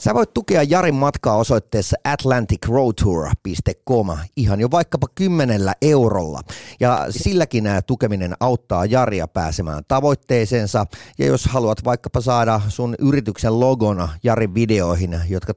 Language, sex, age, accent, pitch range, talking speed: Finnish, male, 30-49, native, 95-130 Hz, 120 wpm